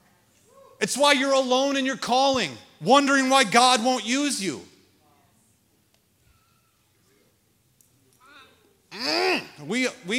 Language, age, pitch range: English, 30-49, 200-275 Hz